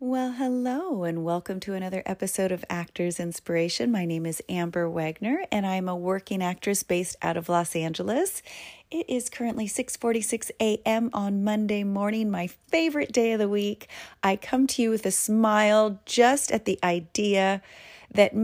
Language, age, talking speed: English, 30-49, 165 wpm